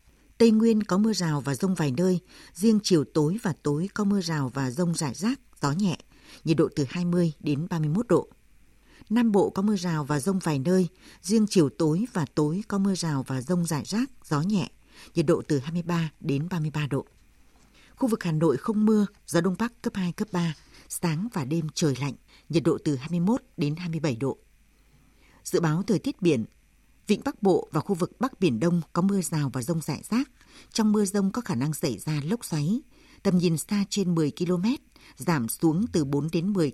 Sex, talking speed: female, 210 wpm